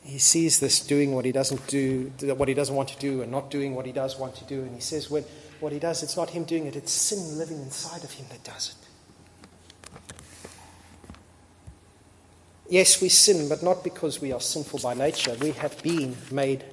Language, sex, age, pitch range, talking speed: English, male, 30-49, 135-185 Hz, 210 wpm